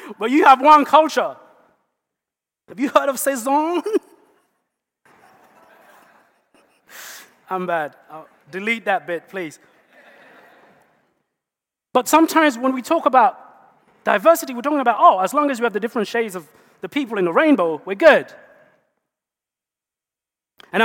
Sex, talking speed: male, 130 wpm